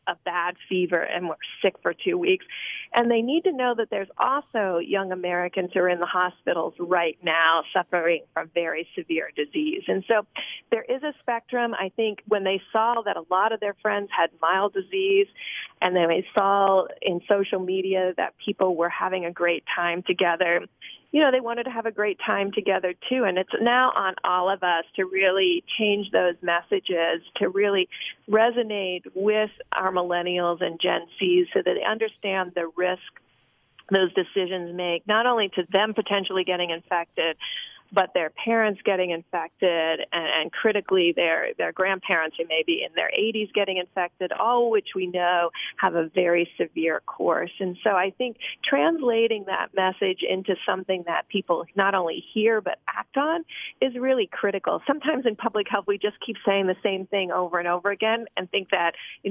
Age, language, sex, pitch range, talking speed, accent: 40-59, English, female, 180-220 Hz, 180 wpm, American